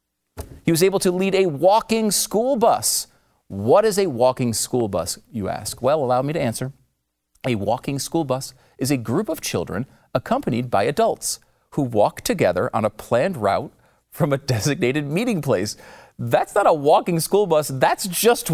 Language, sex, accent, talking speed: English, male, American, 175 wpm